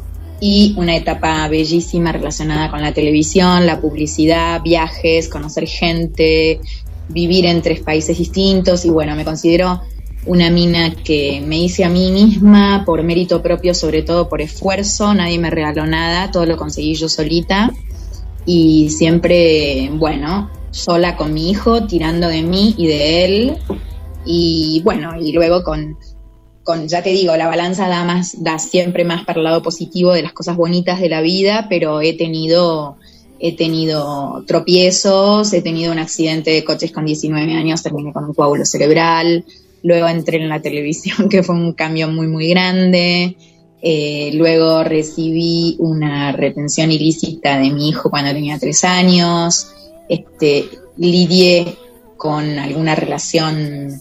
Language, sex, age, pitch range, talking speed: Spanish, female, 20-39, 155-175 Hz, 145 wpm